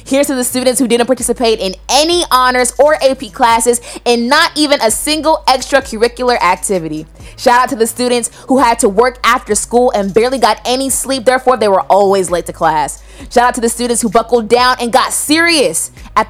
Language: English